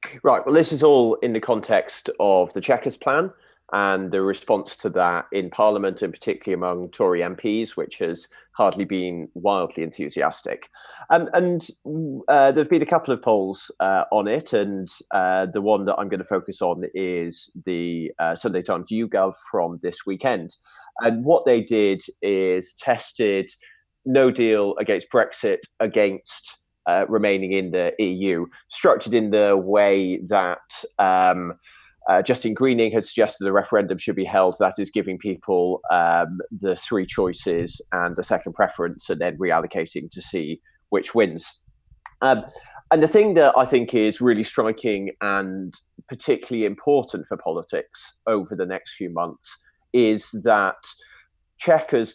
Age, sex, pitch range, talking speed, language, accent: 30-49, male, 95-115 Hz, 155 wpm, English, British